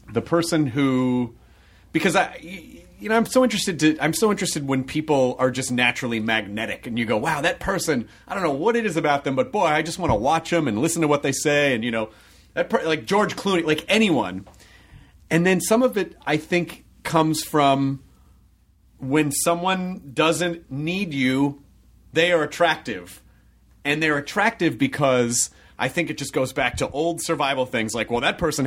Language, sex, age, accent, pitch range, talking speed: English, male, 30-49, American, 135-180 Hz, 195 wpm